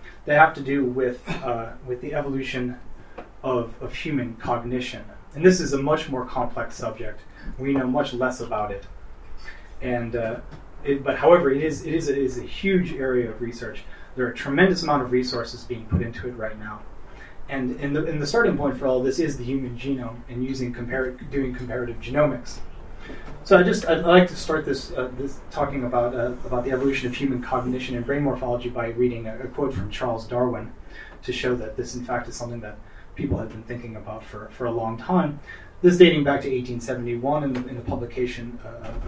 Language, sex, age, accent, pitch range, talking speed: English, male, 30-49, American, 120-140 Hz, 210 wpm